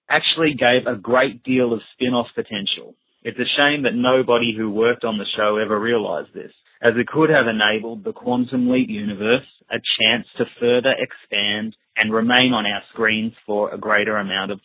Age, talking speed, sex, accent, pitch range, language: 30-49, 185 wpm, male, Australian, 110-125 Hz, English